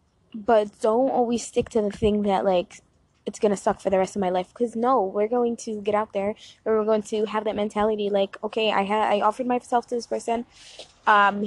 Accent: American